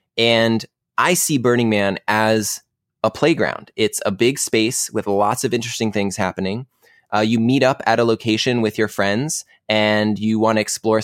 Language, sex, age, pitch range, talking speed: English, male, 20-39, 105-125 Hz, 180 wpm